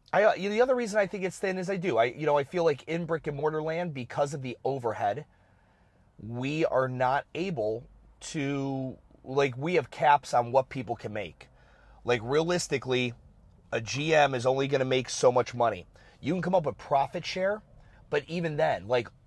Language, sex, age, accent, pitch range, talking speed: English, male, 30-49, American, 120-150 Hz, 195 wpm